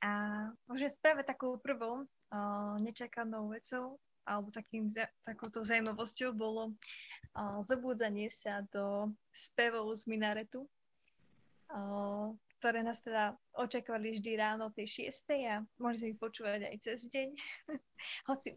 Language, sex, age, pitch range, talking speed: Slovak, female, 20-39, 215-255 Hz, 125 wpm